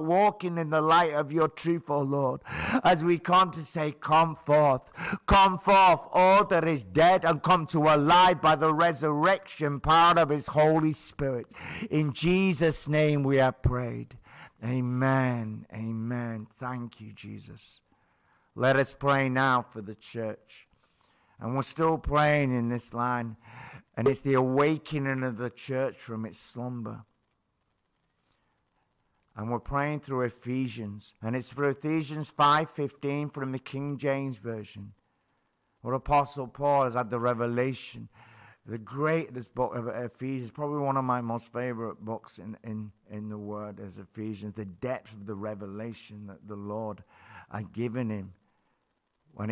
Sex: male